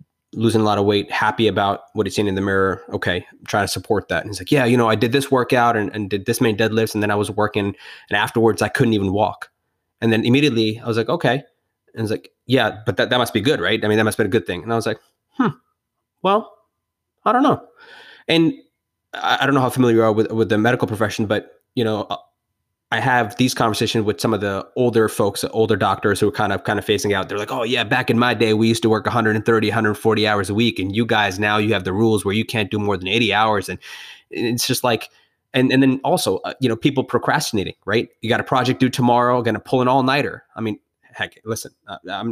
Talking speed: 260 wpm